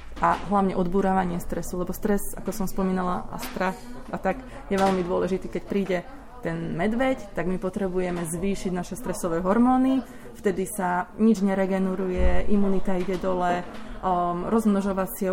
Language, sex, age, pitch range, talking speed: Slovak, female, 20-39, 180-200 Hz, 135 wpm